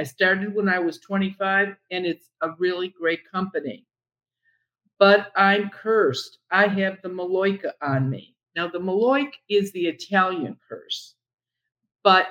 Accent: American